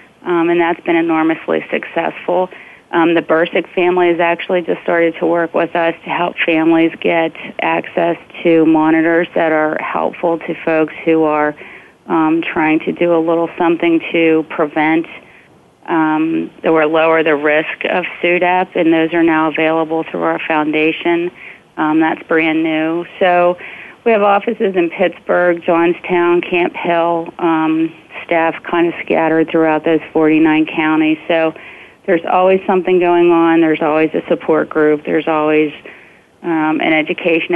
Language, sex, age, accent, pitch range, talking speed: English, female, 40-59, American, 155-170 Hz, 150 wpm